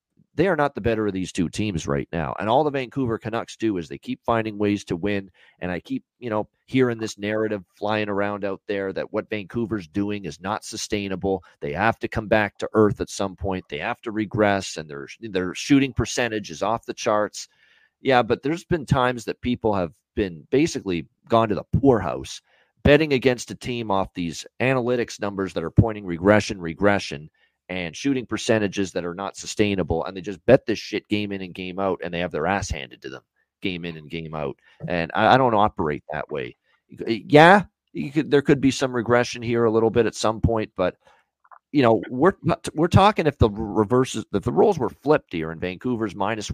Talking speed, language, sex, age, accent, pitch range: 210 wpm, English, male, 40-59, American, 95-125 Hz